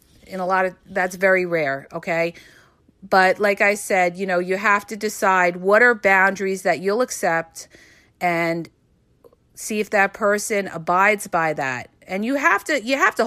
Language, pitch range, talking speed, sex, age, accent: English, 190-260 Hz, 175 wpm, female, 40-59, American